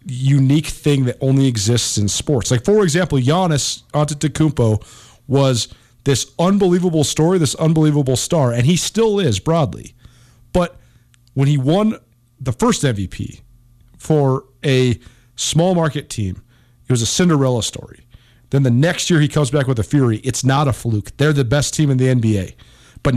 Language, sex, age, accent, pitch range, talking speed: English, male, 40-59, American, 120-165 Hz, 165 wpm